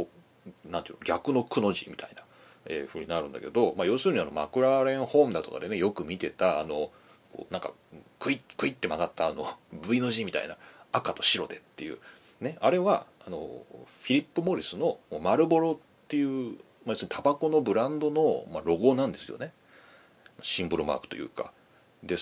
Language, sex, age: Japanese, male, 40-59